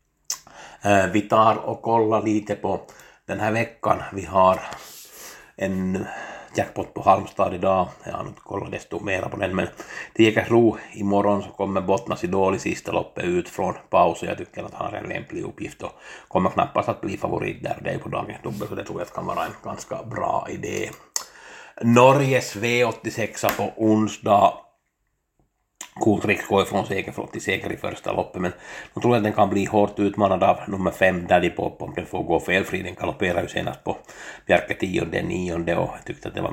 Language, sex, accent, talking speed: Swedish, male, Finnish, 190 wpm